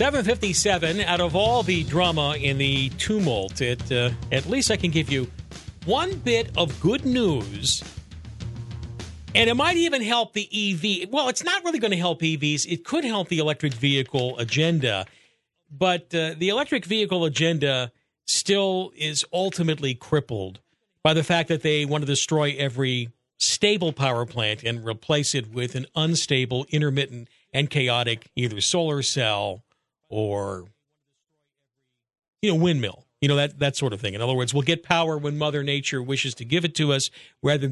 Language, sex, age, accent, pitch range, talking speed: English, male, 50-69, American, 120-165 Hz, 165 wpm